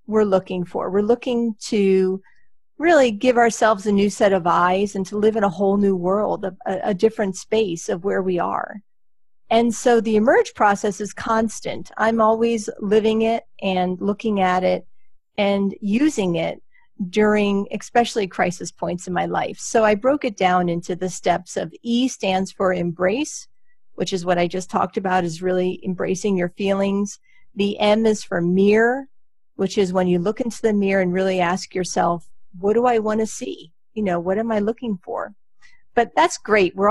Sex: female